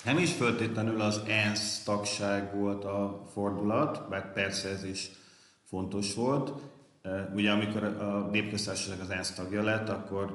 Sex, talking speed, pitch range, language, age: male, 140 wpm, 90-105 Hz, Hungarian, 40-59